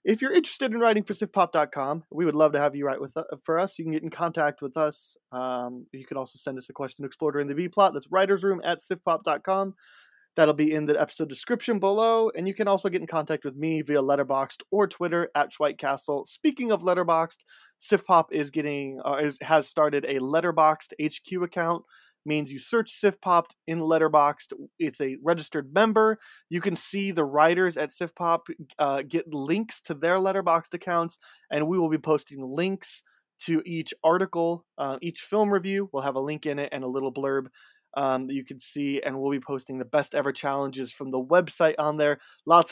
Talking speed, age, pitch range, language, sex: 200 wpm, 20-39, 140-185 Hz, English, male